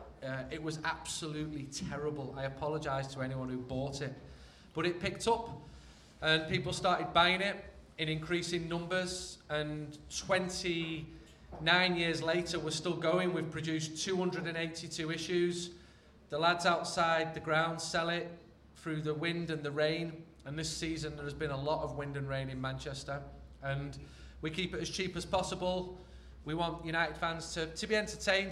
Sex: male